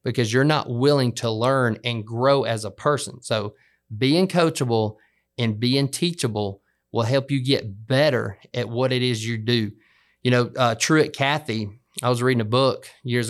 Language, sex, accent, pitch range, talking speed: English, male, American, 115-140 Hz, 175 wpm